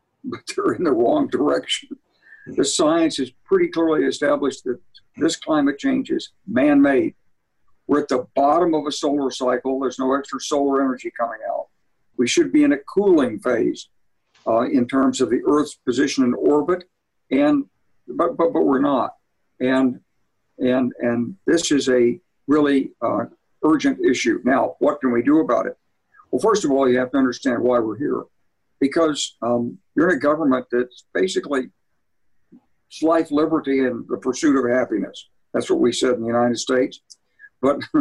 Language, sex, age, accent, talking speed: English, male, 60-79, American, 170 wpm